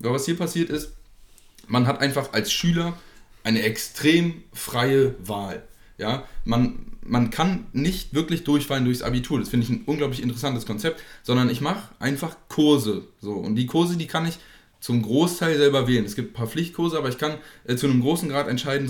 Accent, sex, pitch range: German, male, 120-150 Hz